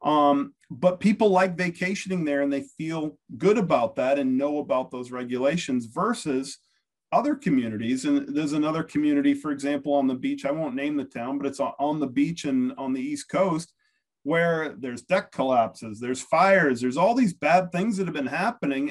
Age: 40-59